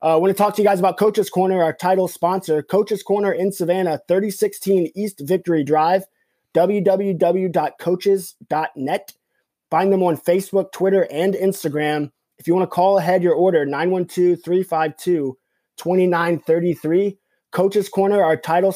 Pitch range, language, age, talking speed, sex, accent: 155-185 Hz, English, 20-39, 140 wpm, male, American